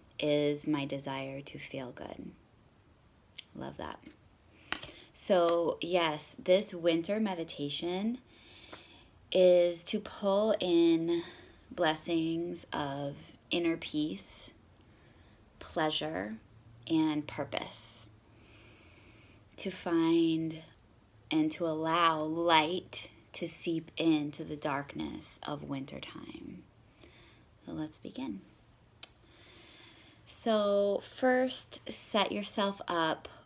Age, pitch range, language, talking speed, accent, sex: 20-39, 140-180 Hz, English, 80 wpm, American, female